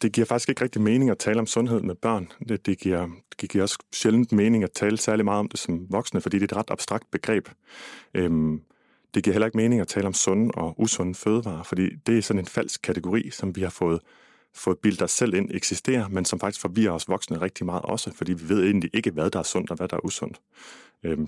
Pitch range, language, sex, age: 90-110 Hz, Danish, male, 30-49